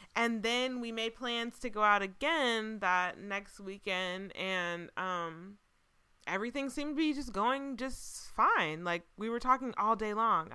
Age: 20-39